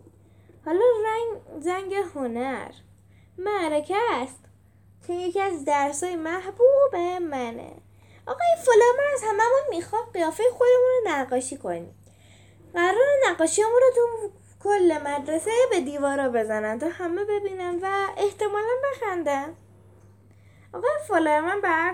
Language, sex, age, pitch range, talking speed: Persian, female, 20-39, 255-405 Hz, 115 wpm